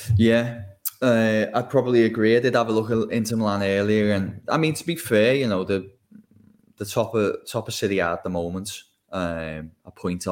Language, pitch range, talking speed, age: English, 85-100 Hz, 205 wpm, 10-29